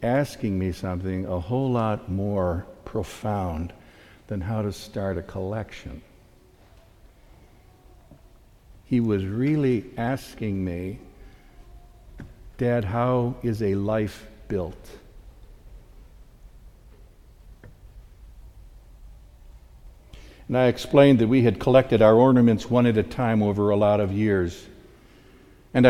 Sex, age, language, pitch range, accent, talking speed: male, 60-79, English, 105-130 Hz, American, 100 wpm